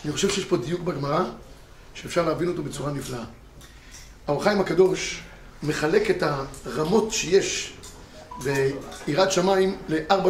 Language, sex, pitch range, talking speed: Hebrew, male, 180-255 Hz, 115 wpm